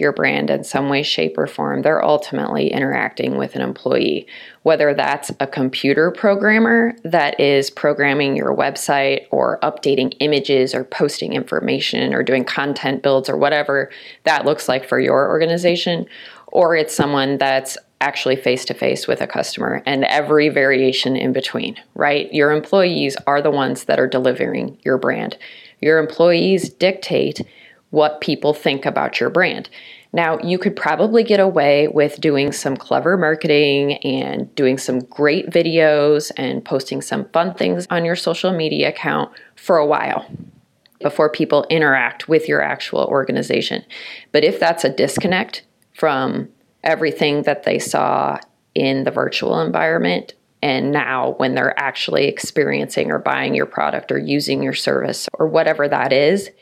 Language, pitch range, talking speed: English, 135-165 Hz, 155 wpm